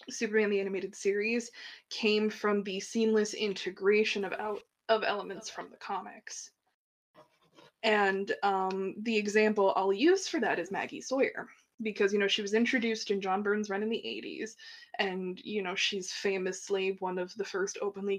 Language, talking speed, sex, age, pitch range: English, 165 wpm, female, 20-39, 195-255 Hz